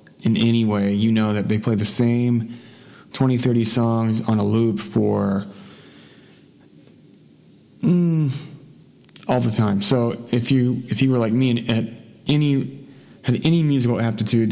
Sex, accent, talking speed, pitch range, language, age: male, American, 150 wpm, 110-130 Hz, English, 30-49